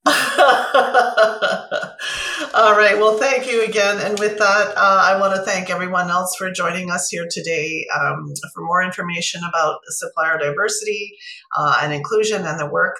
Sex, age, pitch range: female, 40-59, 155-195 Hz